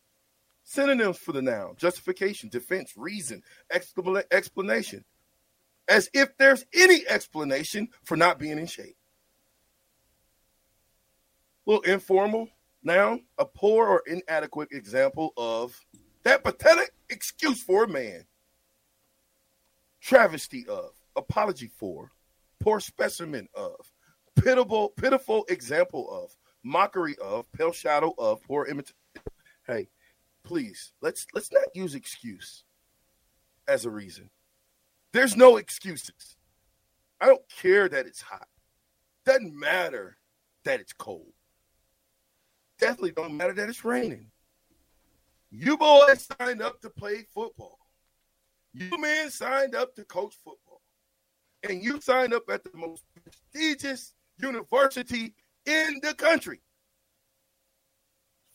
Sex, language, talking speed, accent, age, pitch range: male, English, 110 wpm, American, 40-59, 165-275 Hz